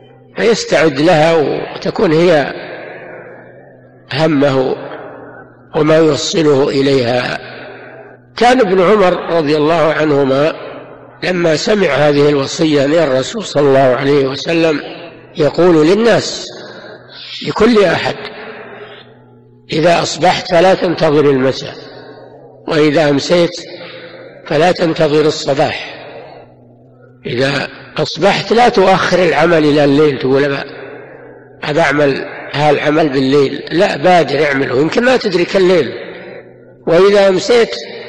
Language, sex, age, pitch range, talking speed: Arabic, male, 60-79, 140-180 Hz, 95 wpm